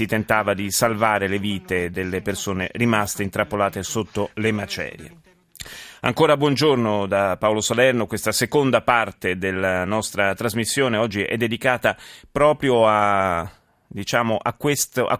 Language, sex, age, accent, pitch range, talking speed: Italian, male, 30-49, native, 100-120 Hz, 120 wpm